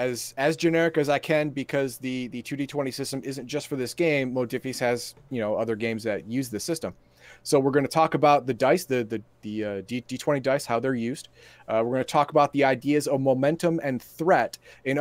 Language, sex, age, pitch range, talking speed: English, male, 30-49, 120-155 Hz, 230 wpm